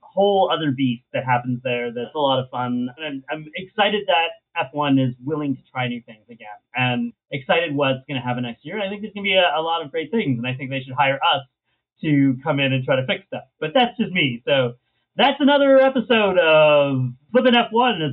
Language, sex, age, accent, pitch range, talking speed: English, male, 30-49, American, 130-195 Hz, 235 wpm